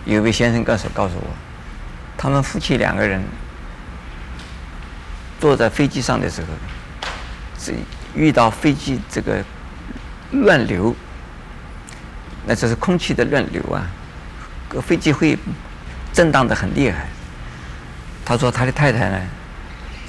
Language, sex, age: Chinese, male, 50-69